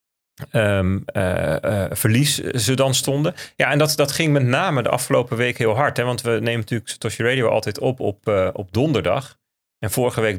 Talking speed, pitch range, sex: 200 wpm, 110-135 Hz, male